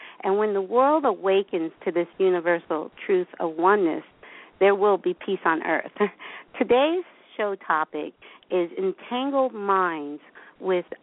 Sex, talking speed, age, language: female, 130 wpm, 50-69, English